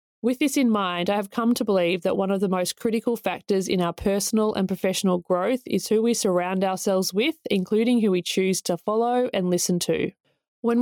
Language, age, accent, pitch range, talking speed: English, 20-39, Australian, 180-220 Hz, 210 wpm